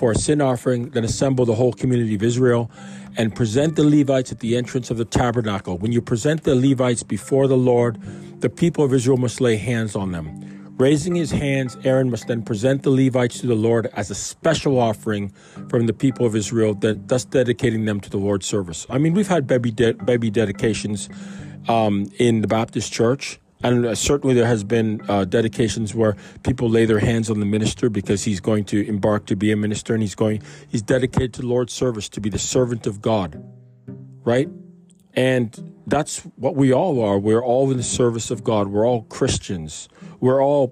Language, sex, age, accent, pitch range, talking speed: English, male, 40-59, American, 105-130 Hz, 200 wpm